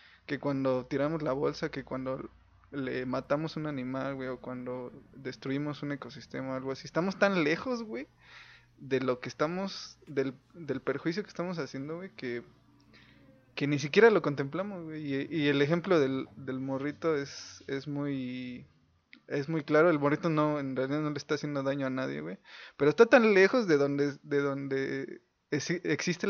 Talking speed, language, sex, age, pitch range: 175 wpm, Spanish, male, 20-39, 135-165 Hz